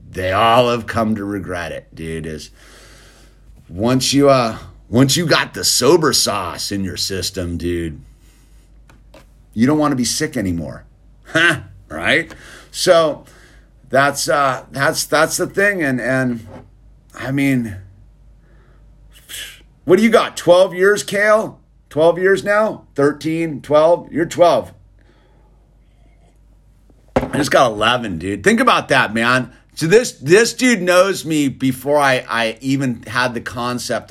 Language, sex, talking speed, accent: English, male, 135 wpm, American